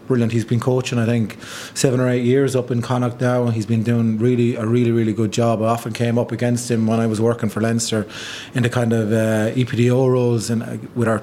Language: English